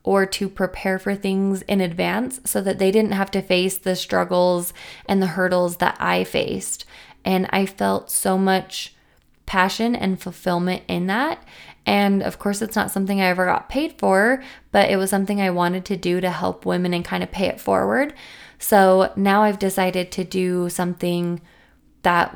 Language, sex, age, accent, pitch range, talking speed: English, female, 20-39, American, 180-195 Hz, 185 wpm